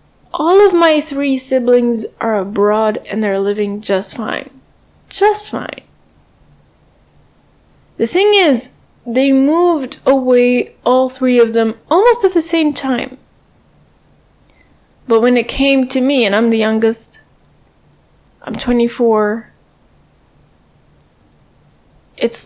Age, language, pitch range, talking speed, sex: 10-29, English, 220-275 Hz, 110 wpm, female